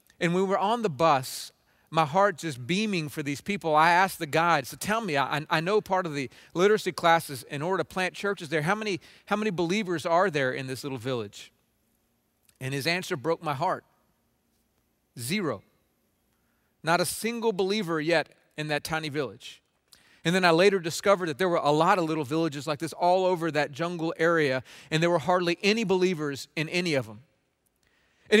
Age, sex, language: 40-59, male, English